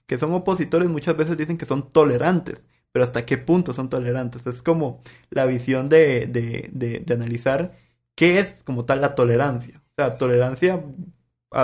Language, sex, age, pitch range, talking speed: Spanish, male, 30-49, 125-160 Hz, 175 wpm